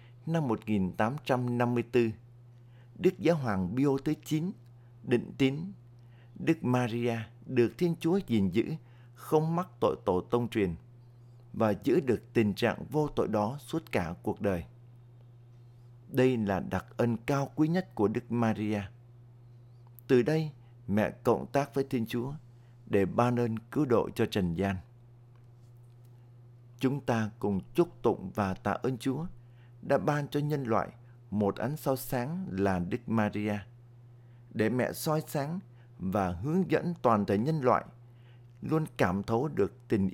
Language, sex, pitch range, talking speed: Vietnamese, male, 110-130 Hz, 145 wpm